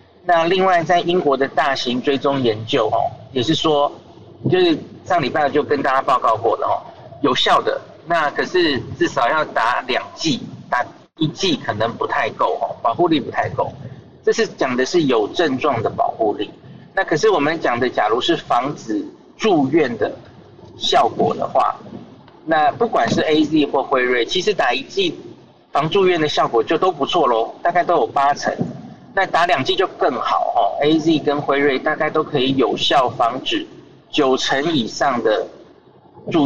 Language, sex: Chinese, male